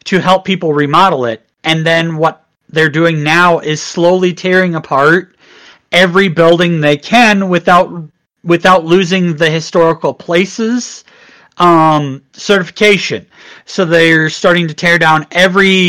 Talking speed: 130 wpm